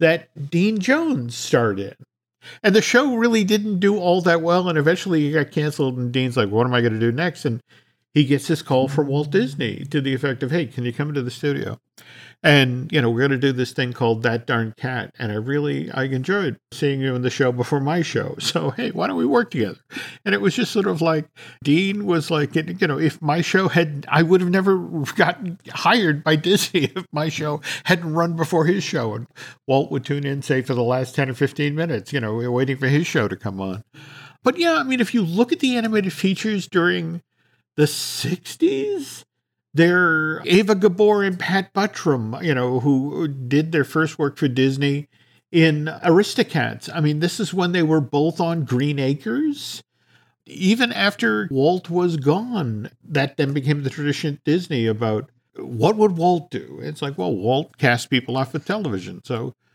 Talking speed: 210 wpm